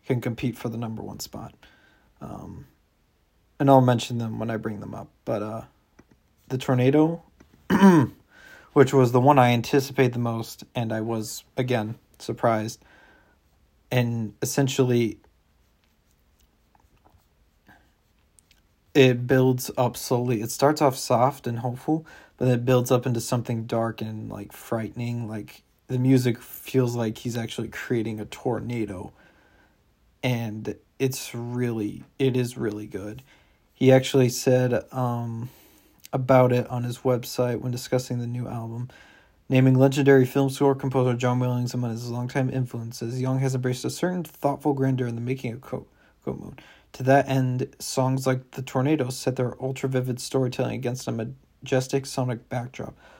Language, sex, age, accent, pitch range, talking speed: English, male, 40-59, American, 115-130 Hz, 145 wpm